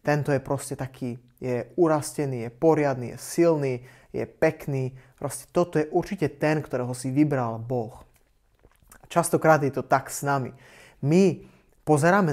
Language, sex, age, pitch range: Slovak, male, 20-39, 130-145 Hz